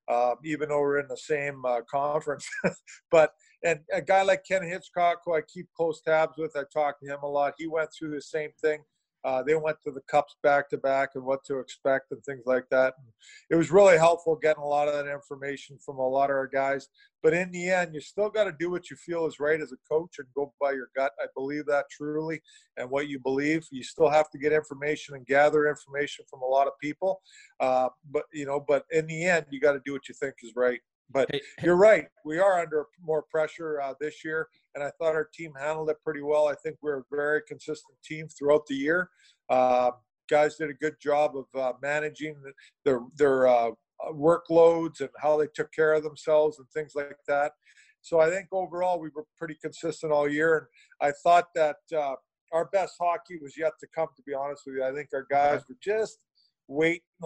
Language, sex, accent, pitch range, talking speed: English, male, American, 140-160 Hz, 225 wpm